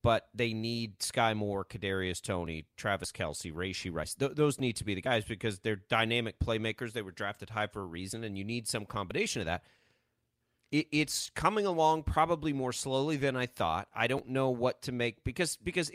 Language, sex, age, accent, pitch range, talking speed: English, male, 30-49, American, 105-150 Hz, 205 wpm